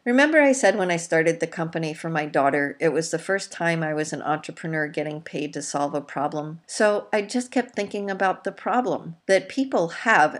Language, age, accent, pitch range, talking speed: English, 50-69, American, 155-200 Hz, 215 wpm